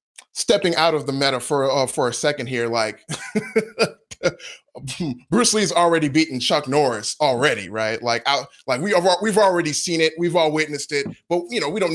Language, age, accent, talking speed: English, 20-39, American, 185 wpm